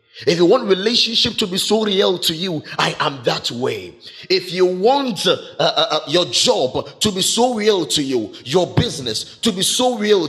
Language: English